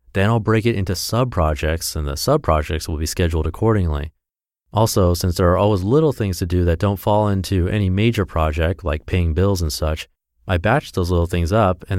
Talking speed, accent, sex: 205 wpm, American, male